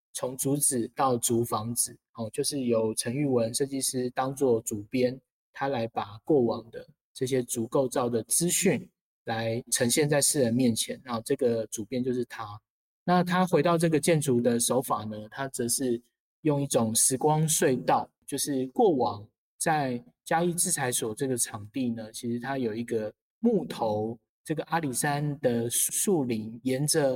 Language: Chinese